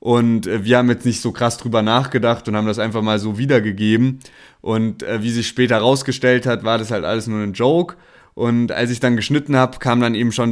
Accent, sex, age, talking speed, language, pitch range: German, male, 20-39, 225 wpm, German, 115-130 Hz